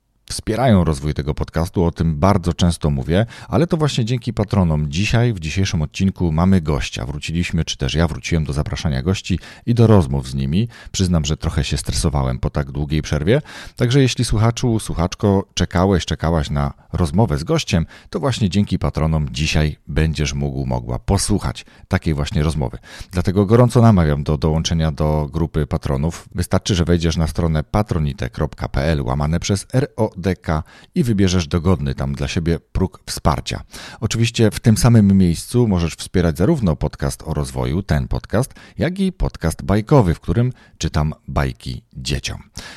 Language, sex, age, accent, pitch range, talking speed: Polish, male, 40-59, native, 75-110 Hz, 155 wpm